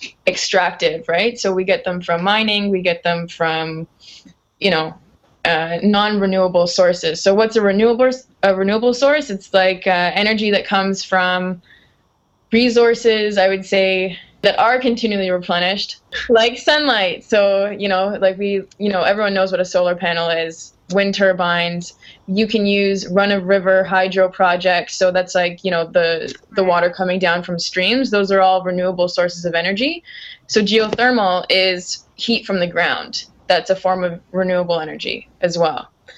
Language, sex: English, female